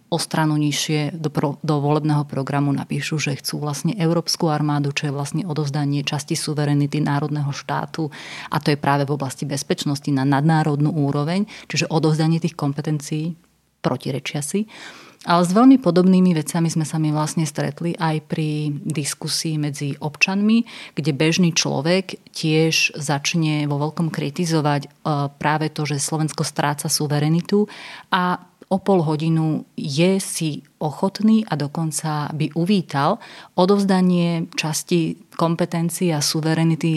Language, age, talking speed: Slovak, 30-49, 130 wpm